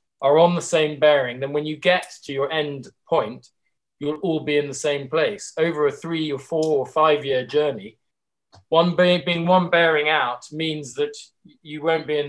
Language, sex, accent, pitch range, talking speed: English, male, British, 130-150 Hz, 195 wpm